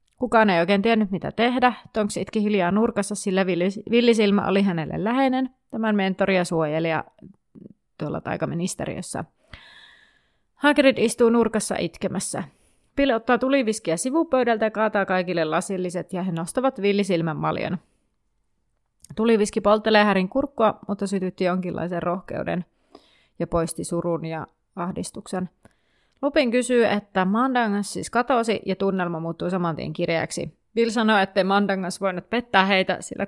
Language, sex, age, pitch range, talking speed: Finnish, female, 30-49, 170-215 Hz, 130 wpm